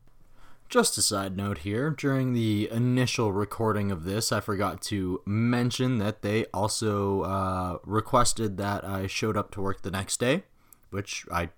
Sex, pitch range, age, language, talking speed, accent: male, 90-120 Hz, 20-39, English, 160 wpm, American